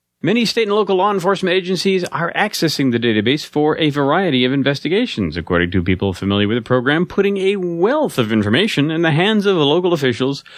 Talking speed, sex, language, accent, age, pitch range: 200 wpm, male, English, American, 30-49, 100-140 Hz